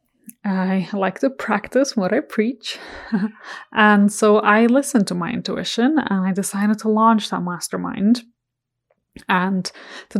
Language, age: English, 20-39